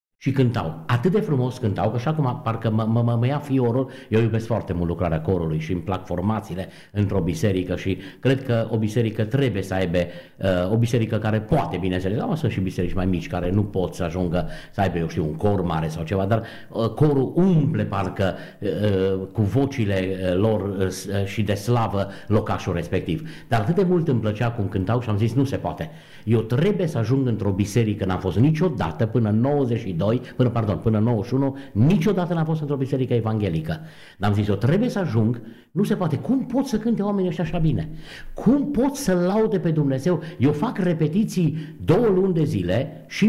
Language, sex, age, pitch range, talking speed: Romanian, male, 50-69, 95-145 Hz, 200 wpm